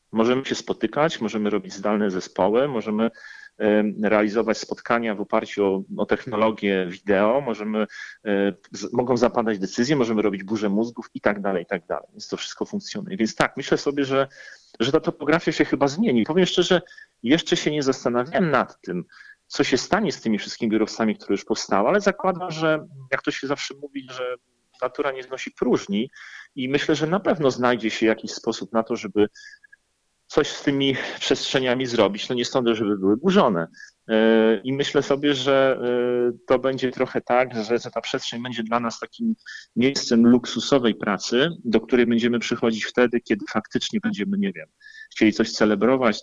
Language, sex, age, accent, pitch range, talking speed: Polish, male, 40-59, native, 110-145 Hz, 175 wpm